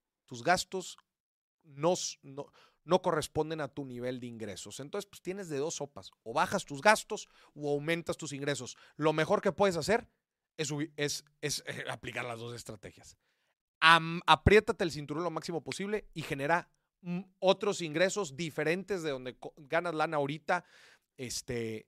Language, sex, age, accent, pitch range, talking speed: Spanish, male, 30-49, Mexican, 145-200 Hz, 155 wpm